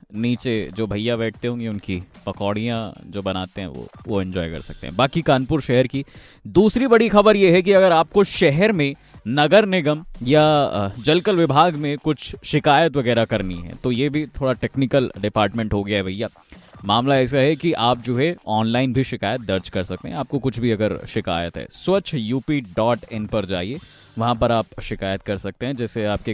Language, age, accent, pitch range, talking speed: Hindi, 20-39, native, 110-155 Hz, 195 wpm